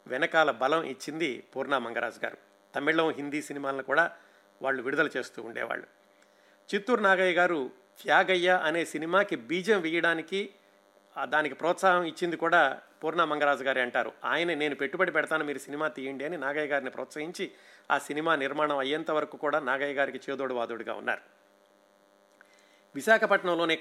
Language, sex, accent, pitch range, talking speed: Telugu, male, native, 135-175 Hz, 130 wpm